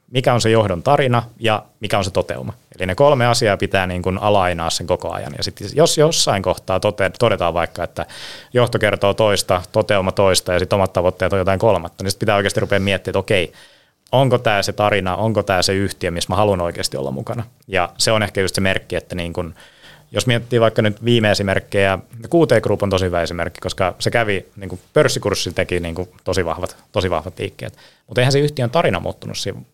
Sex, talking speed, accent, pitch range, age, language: male, 210 wpm, native, 95-125 Hz, 30-49, Finnish